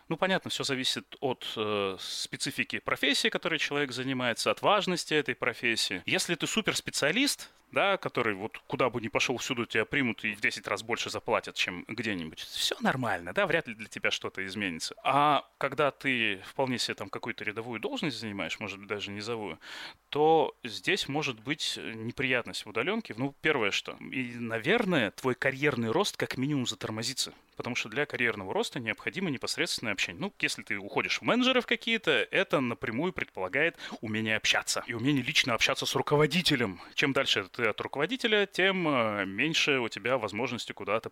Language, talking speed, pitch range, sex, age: Russian, 170 wpm, 115-165 Hz, male, 30-49